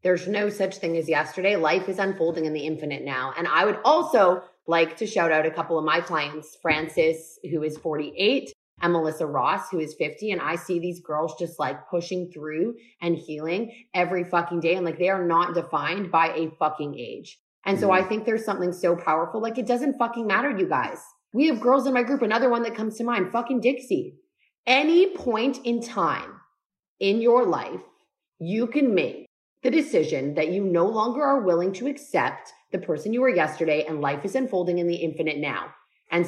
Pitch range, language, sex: 160-230 Hz, English, female